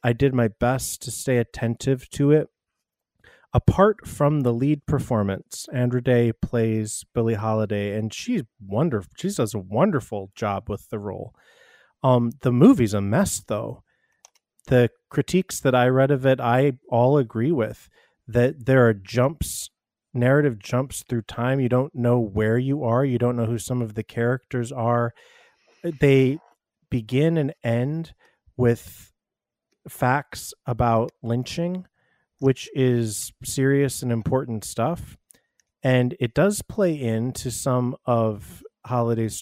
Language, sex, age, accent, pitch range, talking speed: English, male, 30-49, American, 115-135 Hz, 140 wpm